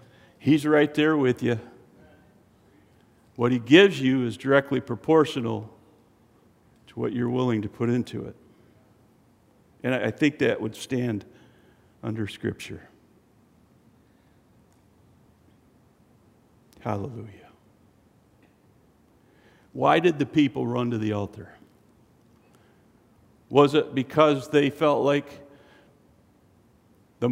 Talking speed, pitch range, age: 95 wpm, 105-135 Hz, 50-69